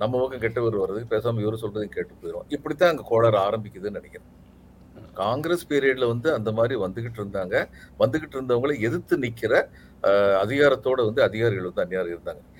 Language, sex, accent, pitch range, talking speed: Tamil, male, native, 115-170 Hz, 145 wpm